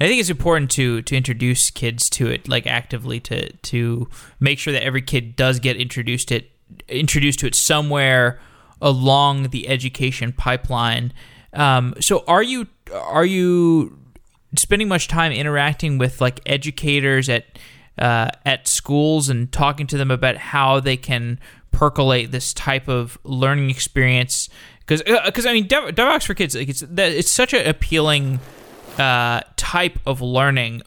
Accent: American